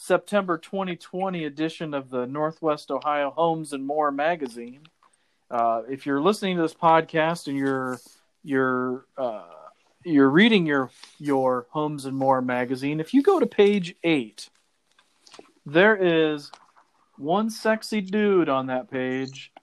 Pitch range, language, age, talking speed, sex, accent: 135-170 Hz, English, 40-59, 140 wpm, male, American